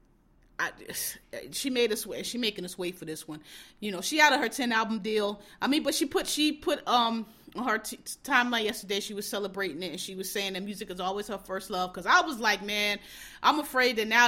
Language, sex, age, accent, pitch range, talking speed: English, female, 30-49, American, 190-255 Hz, 235 wpm